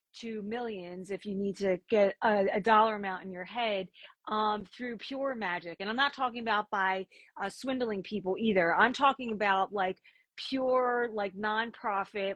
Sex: female